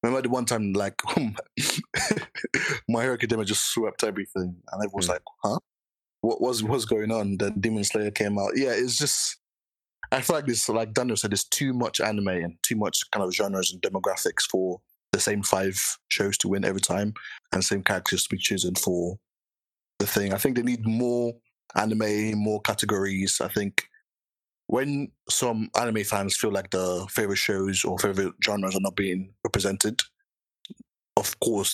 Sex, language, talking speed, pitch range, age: male, English, 180 wpm, 95-110 Hz, 20-39